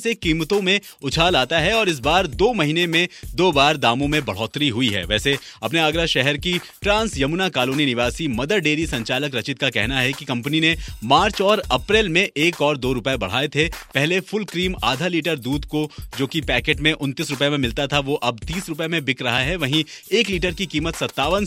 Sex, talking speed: male, 210 wpm